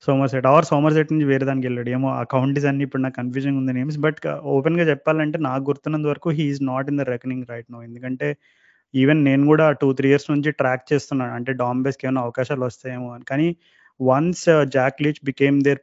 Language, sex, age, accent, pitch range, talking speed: Telugu, male, 20-39, native, 130-145 Hz, 210 wpm